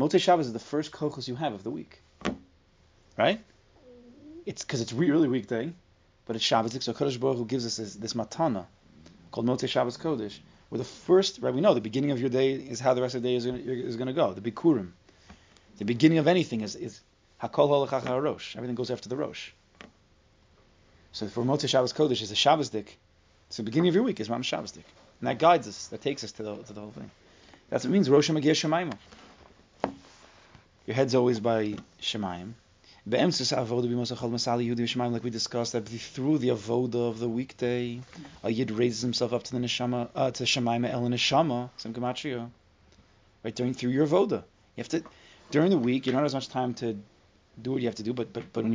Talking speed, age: 205 wpm, 30-49